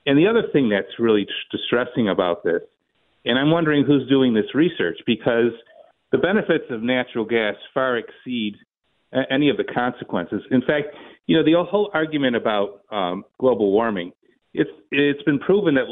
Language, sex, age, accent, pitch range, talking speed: English, male, 50-69, American, 125-175 Hz, 165 wpm